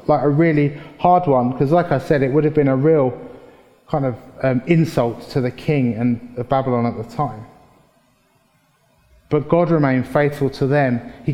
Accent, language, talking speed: British, English, 185 wpm